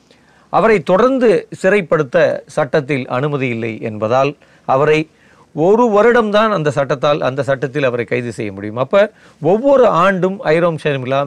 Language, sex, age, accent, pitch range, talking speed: Tamil, male, 40-59, native, 130-175 Hz, 120 wpm